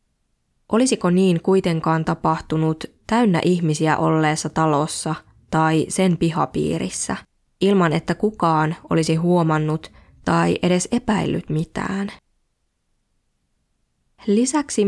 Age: 20-39